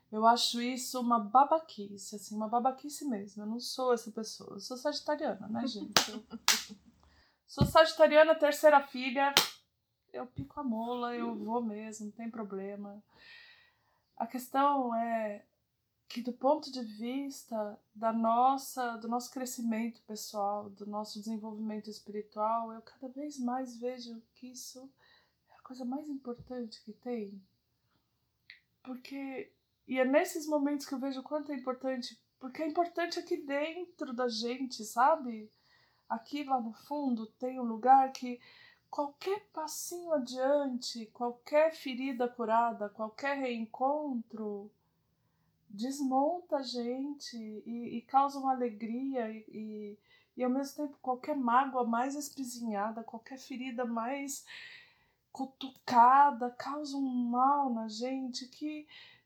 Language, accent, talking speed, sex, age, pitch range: Portuguese, Brazilian, 125 wpm, female, 20-39, 230-280 Hz